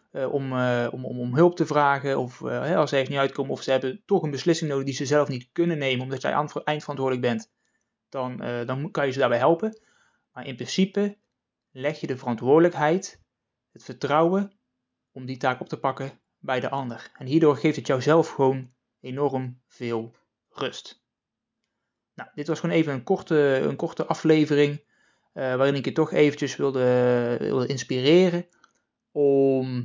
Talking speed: 185 wpm